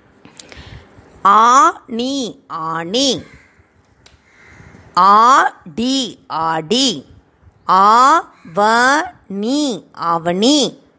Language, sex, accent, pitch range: Tamil, female, native, 200-270 Hz